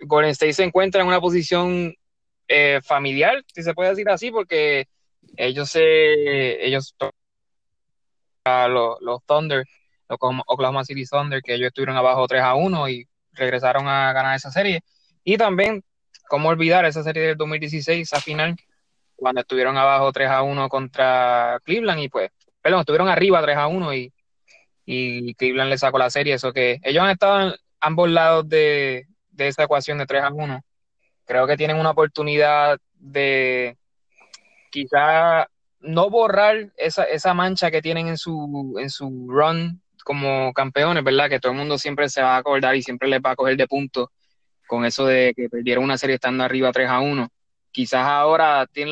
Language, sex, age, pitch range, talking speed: Spanish, male, 20-39, 130-155 Hz, 175 wpm